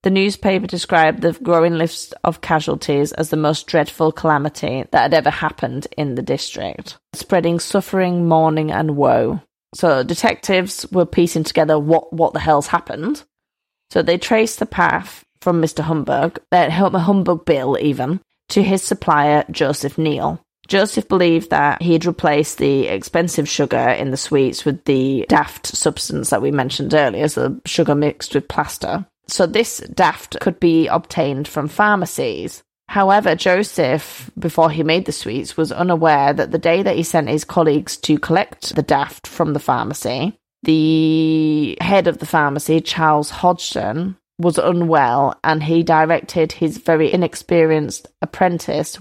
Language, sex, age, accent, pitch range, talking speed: English, female, 20-39, British, 155-180 Hz, 150 wpm